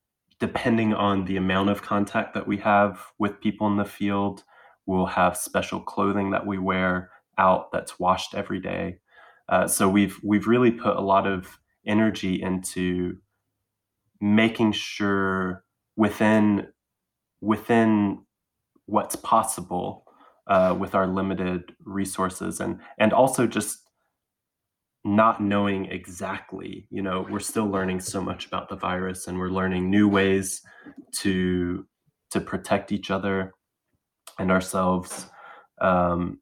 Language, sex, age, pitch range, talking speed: English, male, 20-39, 95-105 Hz, 130 wpm